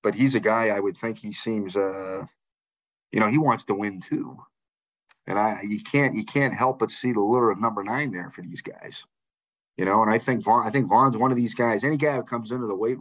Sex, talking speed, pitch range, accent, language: male, 255 wpm, 100-125 Hz, American, English